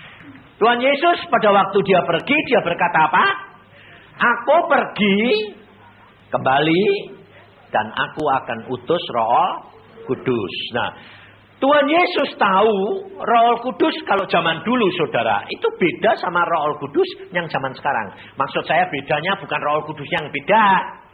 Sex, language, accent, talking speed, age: male, Indonesian, native, 125 wpm, 50-69